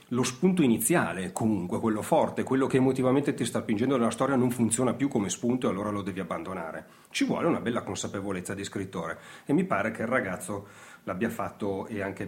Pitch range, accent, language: 115-160 Hz, native, Italian